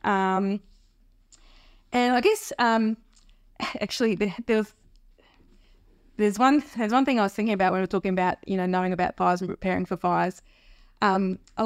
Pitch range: 185-220 Hz